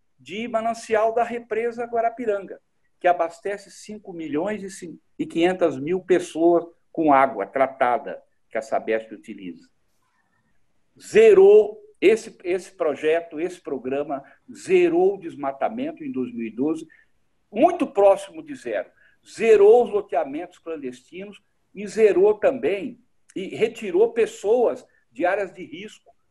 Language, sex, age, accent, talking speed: Portuguese, male, 60-79, Brazilian, 110 wpm